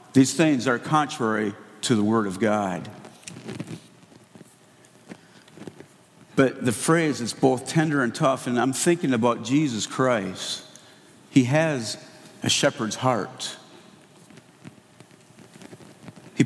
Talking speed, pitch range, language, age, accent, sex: 105 wpm, 120-160 Hz, English, 50-69, American, male